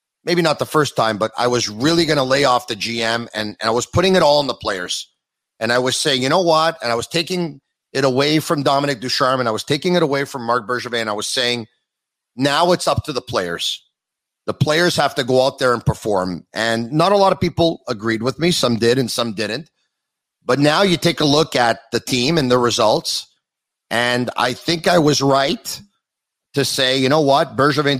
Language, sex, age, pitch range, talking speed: English, male, 40-59, 120-165 Hz, 225 wpm